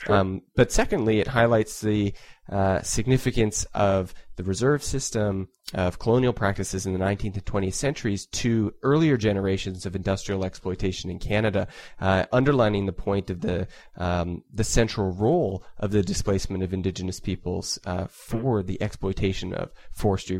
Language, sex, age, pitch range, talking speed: English, male, 20-39, 95-110 Hz, 150 wpm